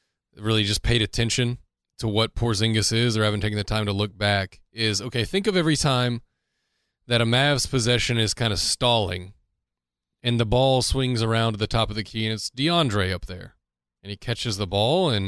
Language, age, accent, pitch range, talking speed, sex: English, 30-49, American, 105-135 Hz, 205 wpm, male